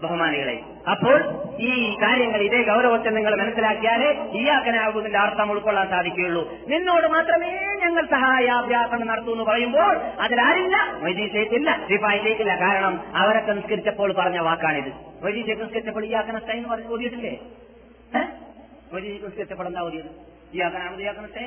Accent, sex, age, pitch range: native, male, 30-49, 170-235 Hz